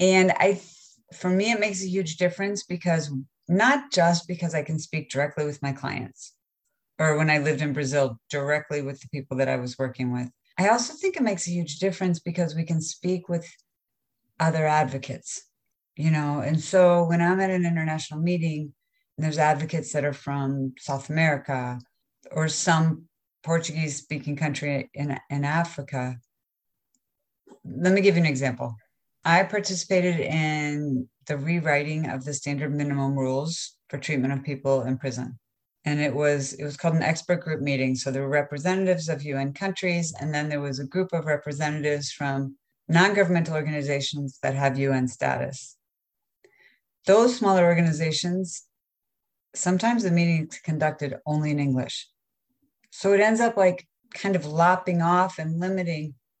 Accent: American